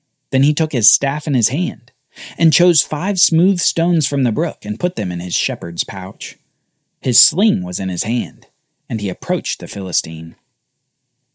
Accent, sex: American, male